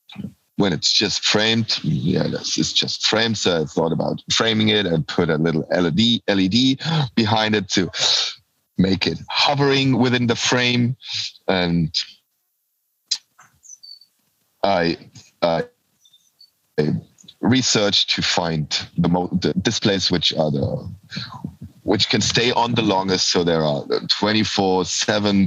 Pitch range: 90-110 Hz